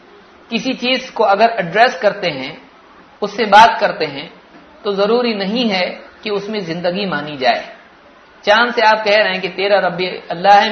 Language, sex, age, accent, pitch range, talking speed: Hindi, male, 50-69, native, 175-210 Hz, 175 wpm